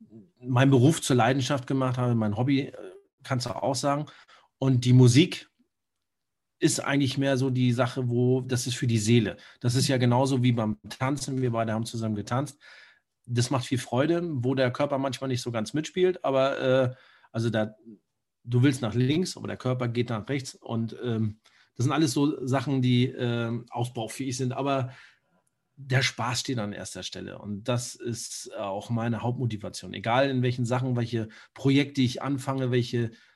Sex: male